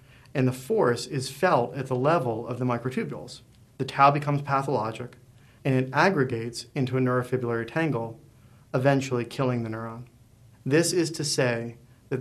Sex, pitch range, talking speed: male, 120-135 Hz, 150 wpm